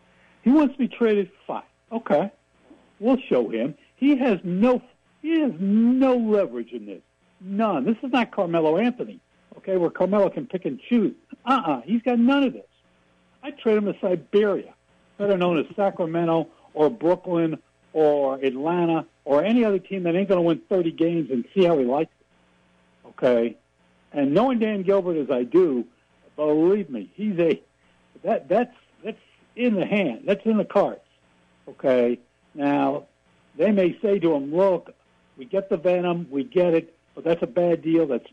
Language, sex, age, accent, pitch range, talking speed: English, male, 60-79, American, 135-200 Hz, 170 wpm